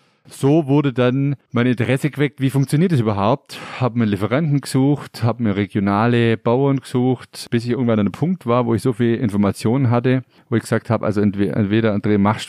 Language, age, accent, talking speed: German, 40-59, German, 200 wpm